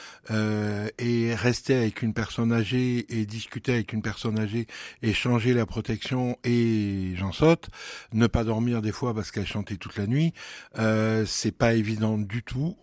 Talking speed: 175 wpm